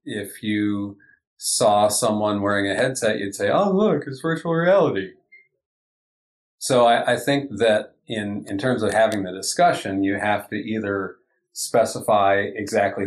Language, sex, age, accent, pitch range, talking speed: English, male, 40-59, American, 100-115 Hz, 145 wpm